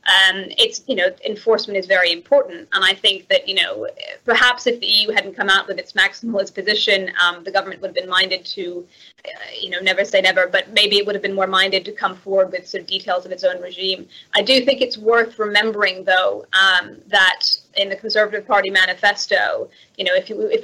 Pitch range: 190-230 Hz